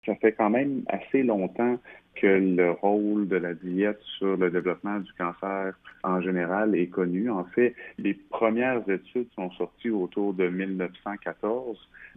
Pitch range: 85-100 Hz